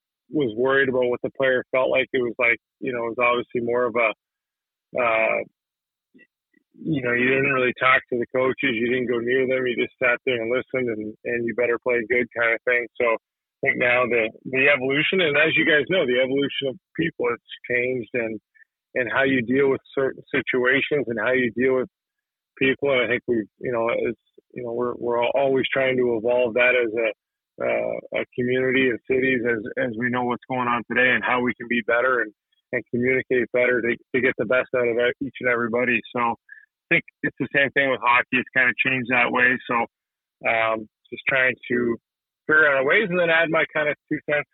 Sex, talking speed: male, 220 wpm